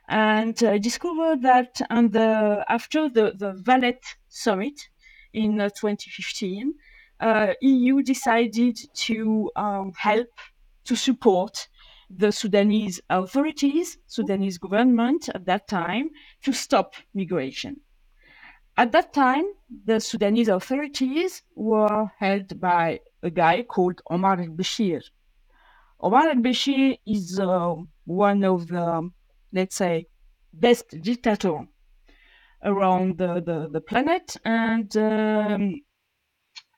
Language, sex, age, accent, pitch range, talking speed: English, female, 50-69, French, 190-255 Hz, 105 wpm